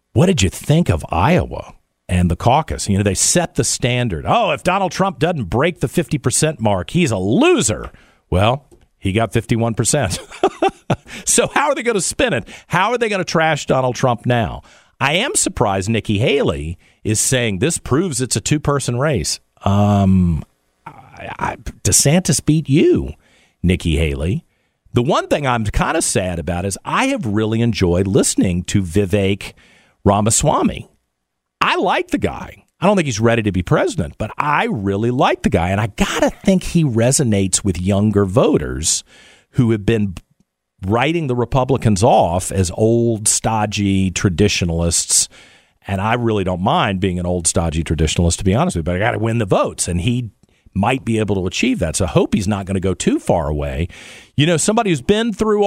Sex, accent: male, American